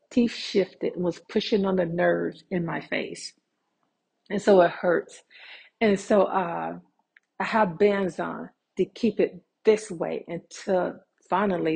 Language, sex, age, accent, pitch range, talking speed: English, female, 50-69, American, 165-195 Hz, 150 wpm